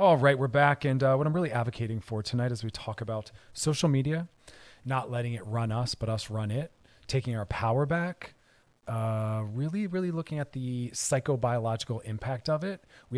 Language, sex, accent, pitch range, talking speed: English, male, American, 115-145 Hz, 190 wpm